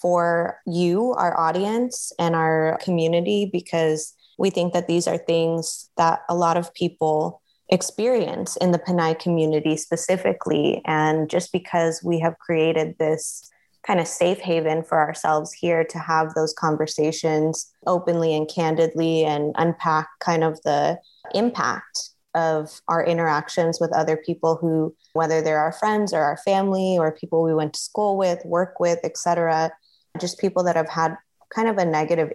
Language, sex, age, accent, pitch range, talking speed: English, female, 20-39, American, 160-175 Hz, 160 wpm